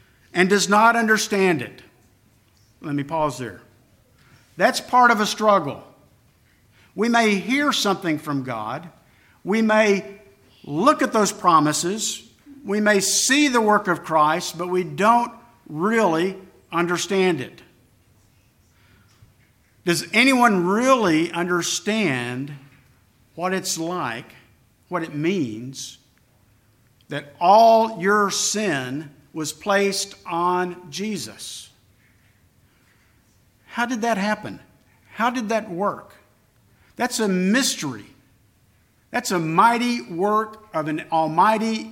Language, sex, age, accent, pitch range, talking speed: English, male, 50-69, American, 135-210 Hz, 105 wpm